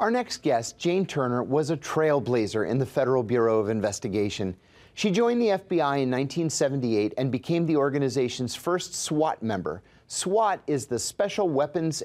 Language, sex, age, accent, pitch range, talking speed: English, male, 30-49, American, 130-175 Hz, 160 wpm